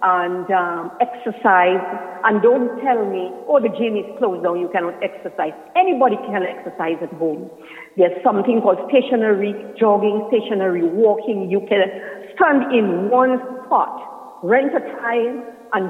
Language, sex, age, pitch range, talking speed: English, female, 50-69, 175-240 Hz, 145 wpm